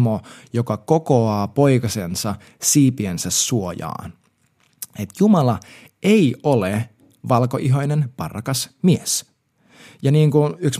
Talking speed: 90 wpm